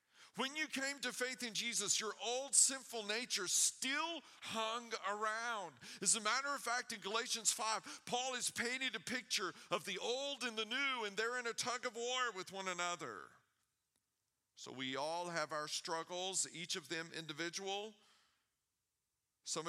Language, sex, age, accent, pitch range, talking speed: English, male, 40-59, American, 160-215 Hz, 165 wpm